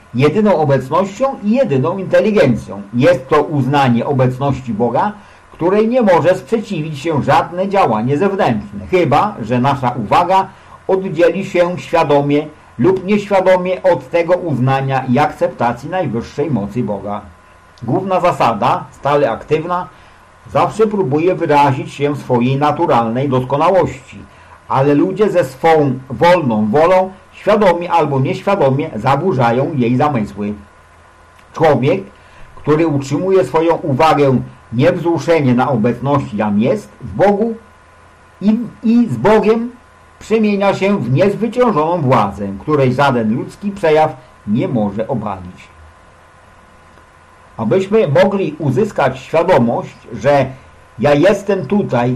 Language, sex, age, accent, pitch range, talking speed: English, male, 50-69, Polish, 120-185 Hz, 110 wpm